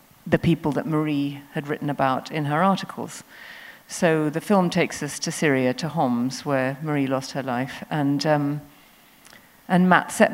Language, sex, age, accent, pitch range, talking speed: English, female, 50-69, British, 150-180 Hz, 170 wpm